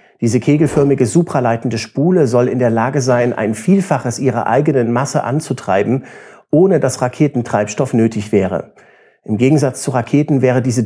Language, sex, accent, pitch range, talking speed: German, male, German, 110-135 Hz, 145 wpm